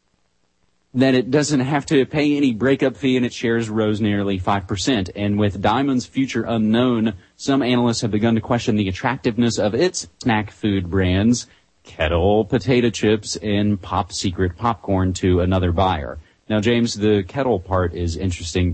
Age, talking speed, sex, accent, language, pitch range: 30-49, 155 wpm, male, American, English, 90-110 Hz